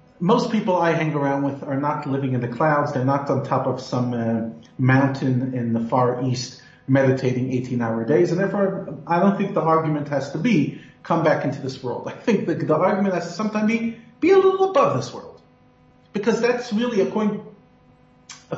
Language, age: English, 40-59